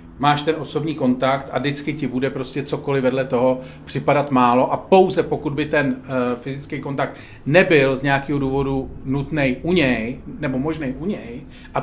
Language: Czech